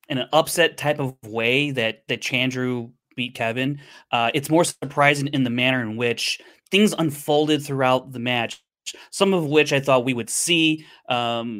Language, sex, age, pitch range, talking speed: English, male, 30-49, 120-150 Hz, 175 wpm